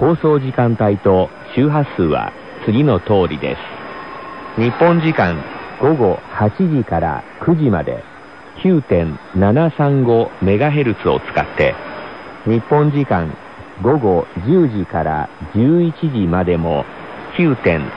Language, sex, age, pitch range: Korean, male, 50-69, 95-145 Hz